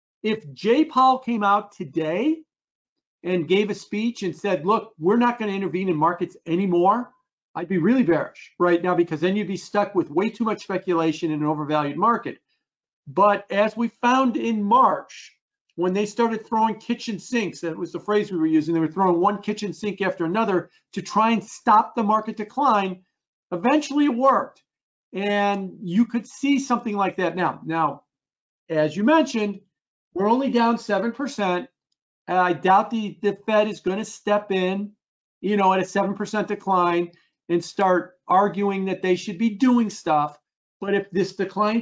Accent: American